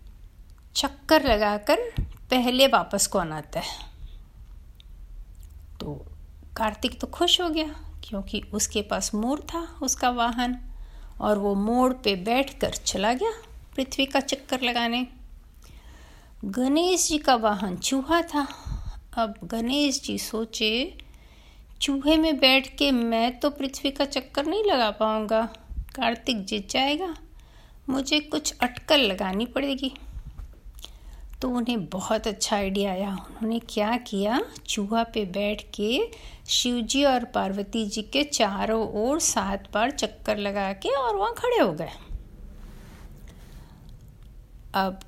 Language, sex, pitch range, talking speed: Hindi, female, 205-275 Hz, 120 wpm